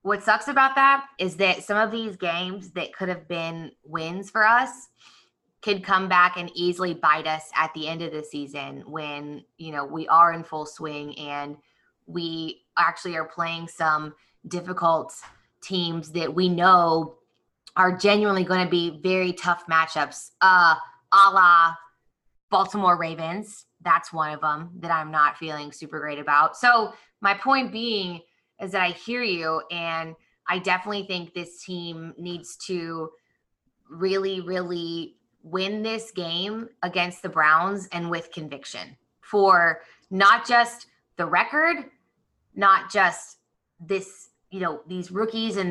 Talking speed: 150 wpm